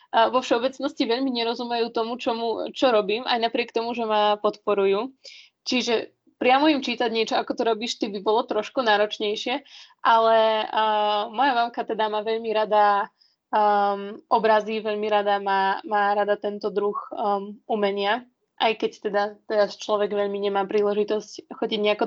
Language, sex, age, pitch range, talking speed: Slovak, female, 20-39, 210-240 Hz, 155 wpm